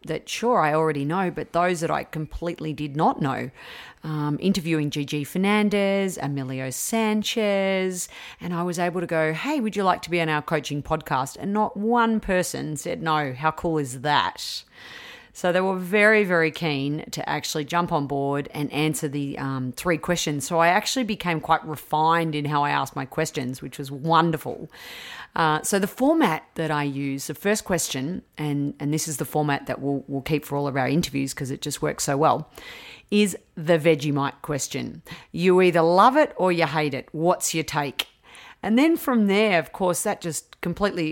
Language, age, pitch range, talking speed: English, 40-59, 150-185 Hz, 195 wpm